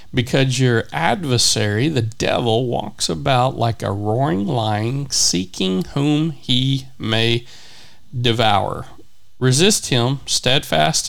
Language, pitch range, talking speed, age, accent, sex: English, 110-130 Hz, 105 wpm, 40-59, American, male